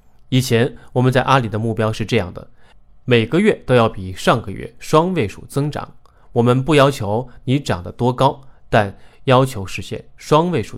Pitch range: 110-135 Hz